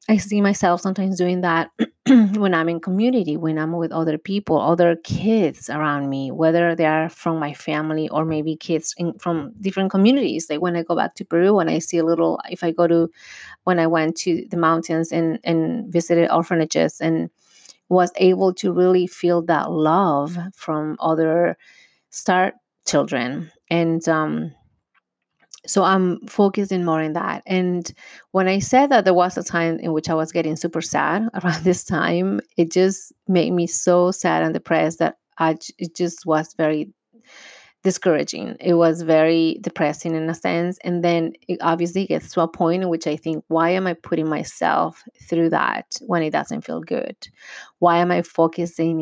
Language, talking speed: English, 180 wpm